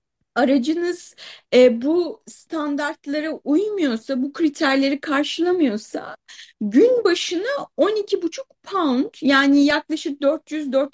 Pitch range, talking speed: 270-360 Hz, 105 wpm